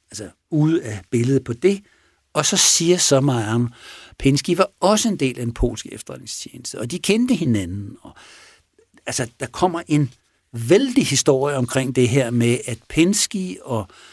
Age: 60-79